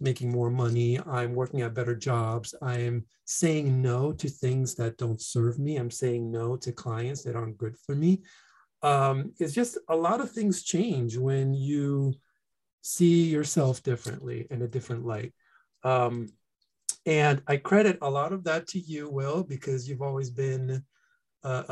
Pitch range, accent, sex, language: 120-160 Hz, American, male, English